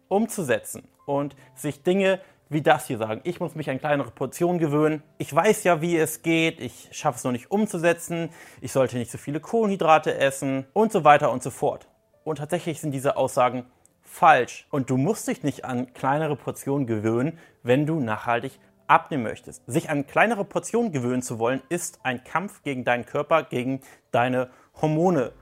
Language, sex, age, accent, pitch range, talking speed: German, male, 30-49, German, 125-160 Hz, 180 wpm